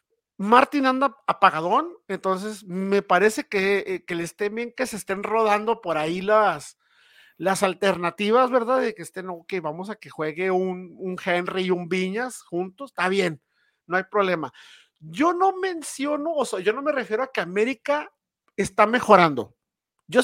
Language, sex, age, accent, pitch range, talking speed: Spanish, male, 50-69, Mexican, 185-270 Hz, 170 wpm